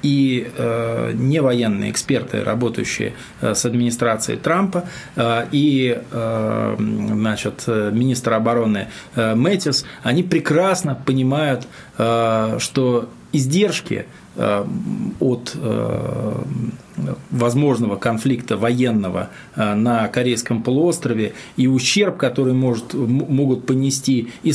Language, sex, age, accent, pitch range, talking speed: Russian, male, 20-39, native, 120-155 Hz, 100 wpm